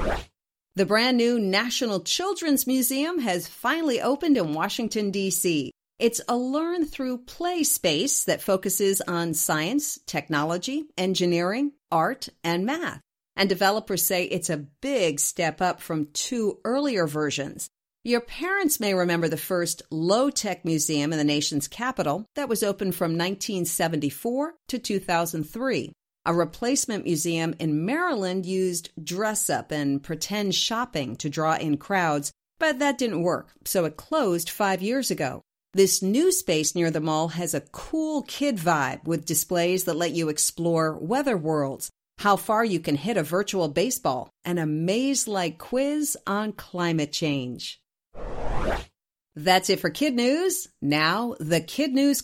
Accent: American